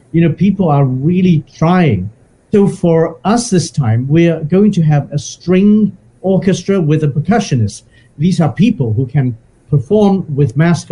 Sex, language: male, English